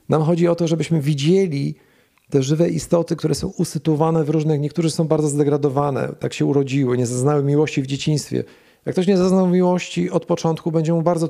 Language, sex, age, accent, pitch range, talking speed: Polish, male, 40-59, native, 140-170 Hz, 190 wpm